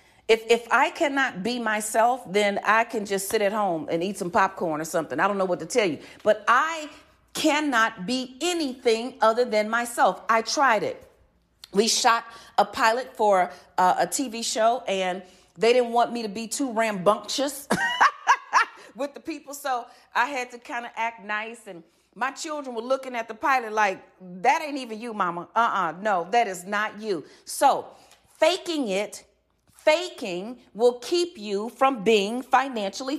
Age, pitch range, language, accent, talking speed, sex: 40-59, 225-300 Hz, English, American, 175 wpm, female